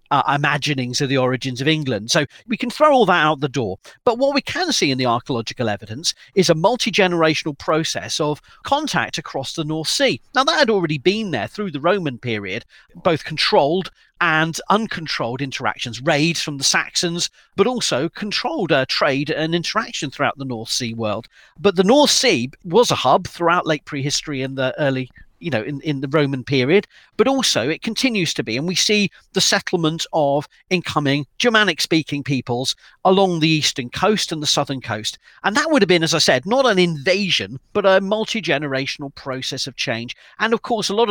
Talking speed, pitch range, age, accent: 190 wpm, 135-195 Hz, 40-59, British